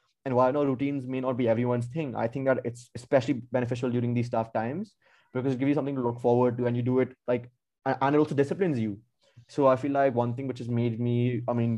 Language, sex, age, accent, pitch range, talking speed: English, male, 20-39, Indian, 120-140 Hz, 255 wpm